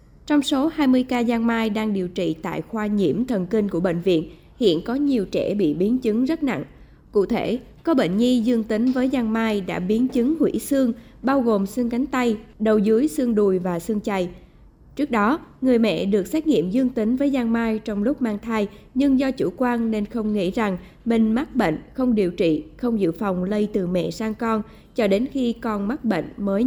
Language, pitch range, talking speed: Vietnamese, 195-250 Hz, 220 wpm